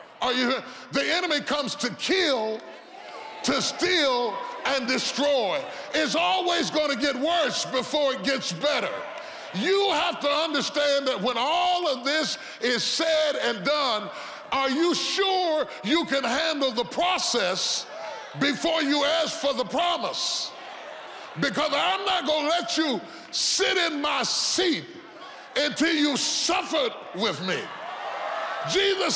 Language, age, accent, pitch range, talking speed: English, 30-49, American, 250-335 Hz, 135 wpm